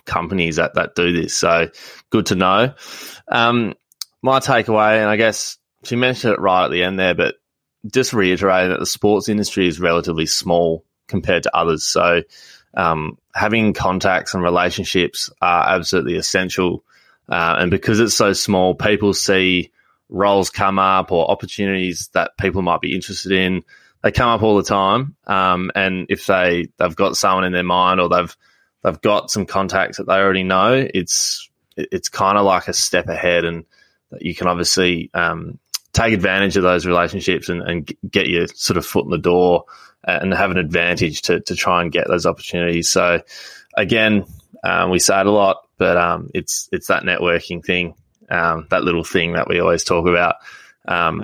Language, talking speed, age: English, 180 wpm, 20-39